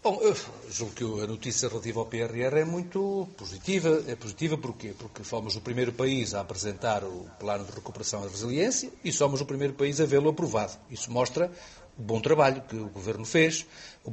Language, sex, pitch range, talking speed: Portuguese, male, 115-155 Hz, 195 wpm